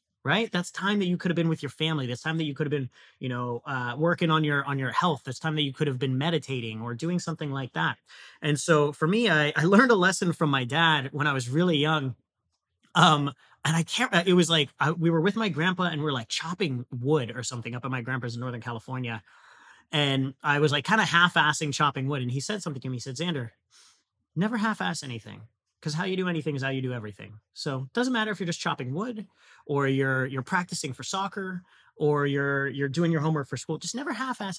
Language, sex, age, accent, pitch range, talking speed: English, male, 30-49, American, 135-175 Hz, 245 wpm